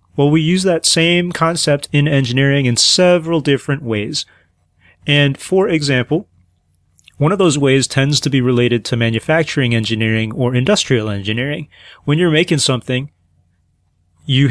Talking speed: 140 wpm